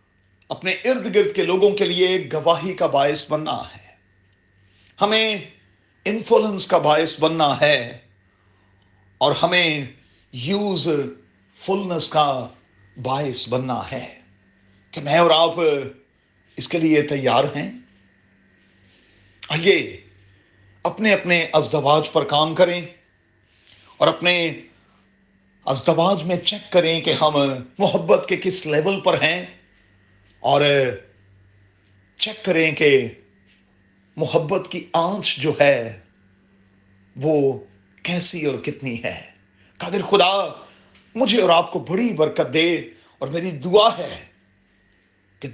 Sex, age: male, 50-69